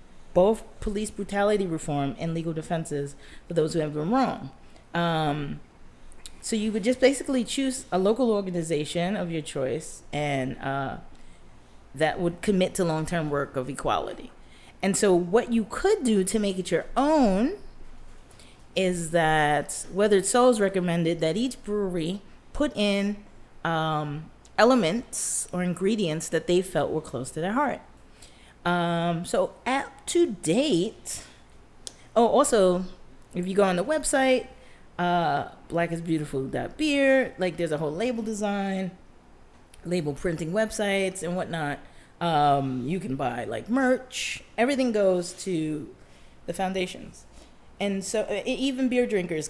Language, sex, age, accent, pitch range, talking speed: English, female, 30-49, American, 160-210 Hz, 135 wpm